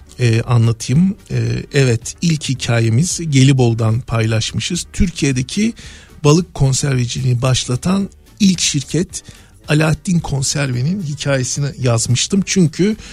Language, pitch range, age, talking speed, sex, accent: Turkish, 120-155 Hz, 50-69, 85 wpm, male, native